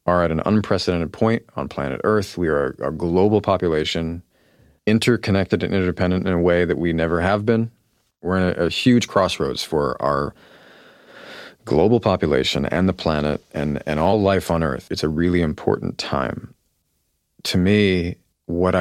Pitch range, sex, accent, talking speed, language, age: 85-105 Hz, male, American, 165 wpm, English, 30-49